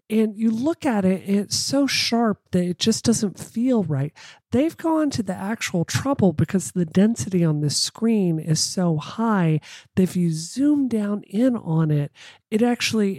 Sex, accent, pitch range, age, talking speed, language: male, American, 160-200 Hz, 40-59, 180 wpm, English